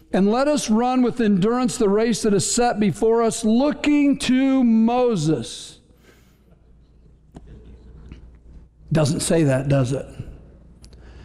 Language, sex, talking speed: English, male, 110 wpm